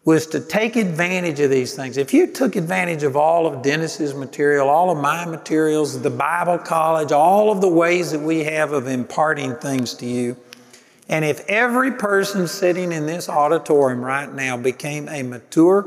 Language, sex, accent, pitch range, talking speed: English, male, American, 135-175 Hz, 180 wpm